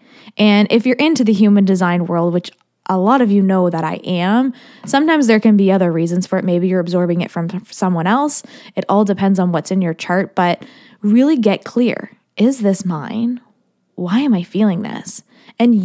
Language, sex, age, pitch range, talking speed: English, female, 20-39, 180-235 Hz, 200 wpm